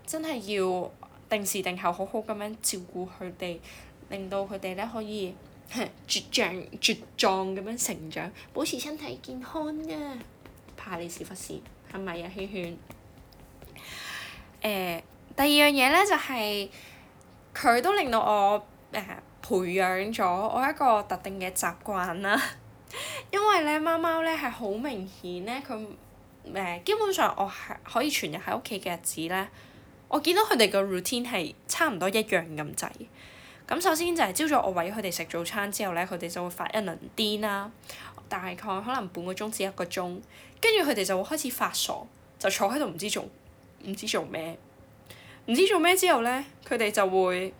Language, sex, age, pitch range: Chinese, female, 10-29, 185-255 Hz